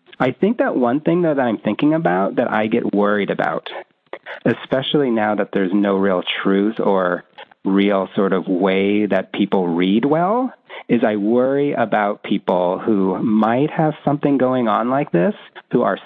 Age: 40-59